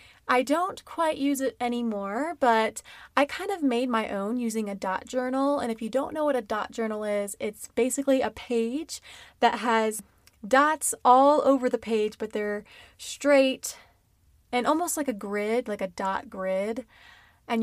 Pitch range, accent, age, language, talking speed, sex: 220-265 Hz, American, 20-39, English, 175 wpm, female